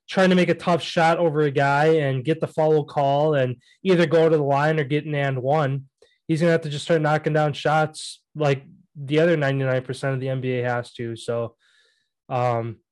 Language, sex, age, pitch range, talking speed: English, male, 20-39, 135-160 Hz, 225 wpm